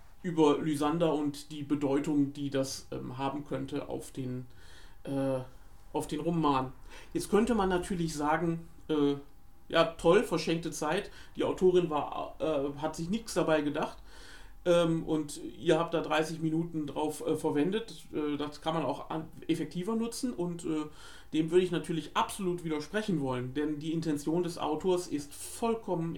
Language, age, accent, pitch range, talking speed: German, 40-59, German, 150-175 Hz, 160 wpm